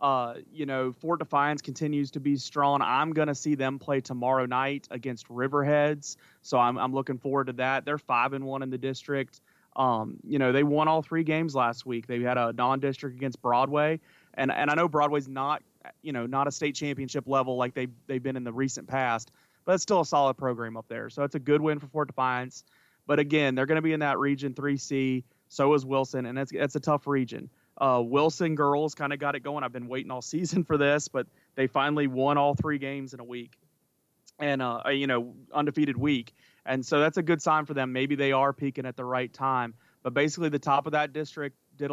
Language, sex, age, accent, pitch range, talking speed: English, male, 30-49, American, 130-145 Hz, 230 wpm